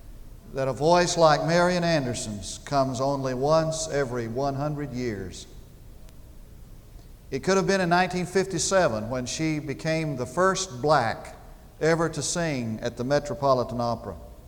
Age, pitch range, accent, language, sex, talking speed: 50-69, 130-170 Hz, American, English, male, 135 wpm